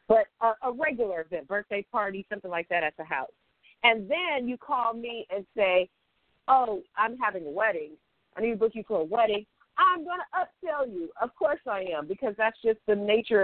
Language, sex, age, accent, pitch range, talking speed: English, female, 40-59, American, 190-255 Hz, 210 wpm